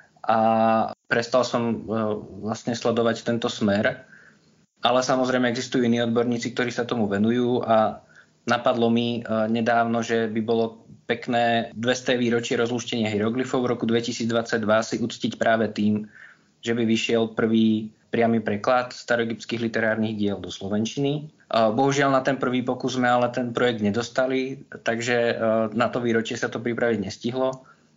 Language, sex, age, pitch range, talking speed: Slovak, male, 20-39, 110-120 Hz, 135 wpm